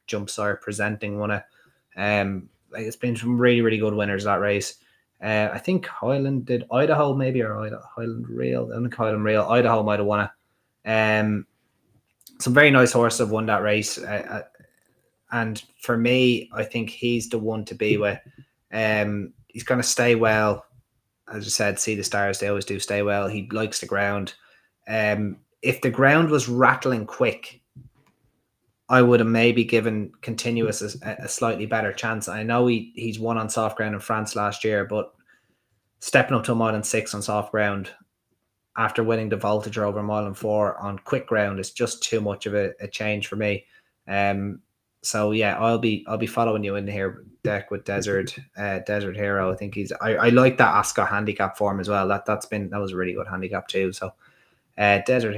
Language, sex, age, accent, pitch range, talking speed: English, male, 20-39, Irish, 100-115 Hz, 195 wpm